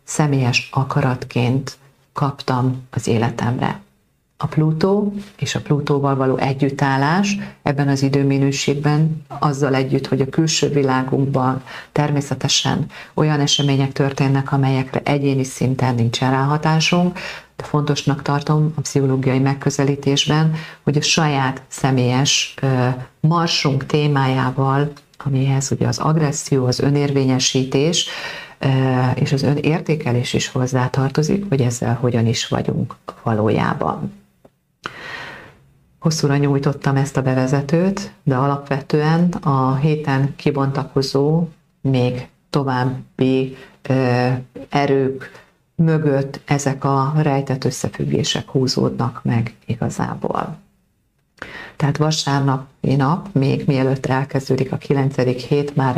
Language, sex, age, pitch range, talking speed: Hungarian, female, 40-59, 130-150 Hz, 100 wpm